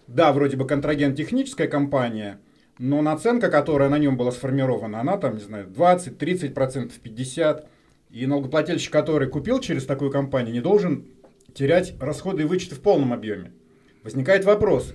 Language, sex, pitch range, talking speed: Russian, male, 130-170 Hz, 150 wpm